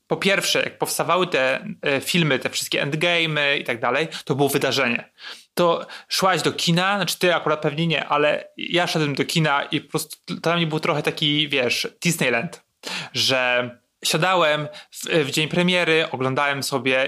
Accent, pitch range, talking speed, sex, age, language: native, 140-175 Hz, 165 wpm, male, 30-49, Polish